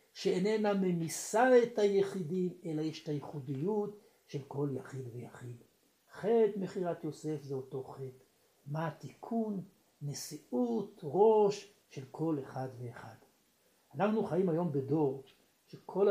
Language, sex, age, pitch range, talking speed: Hebrew, male, 60-79, 140-190 Hz, 115 wpm